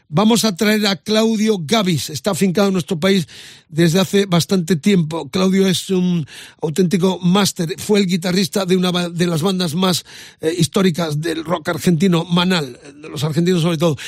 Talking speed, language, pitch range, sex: 165 wpm, Spanish, 170-195 Hz, male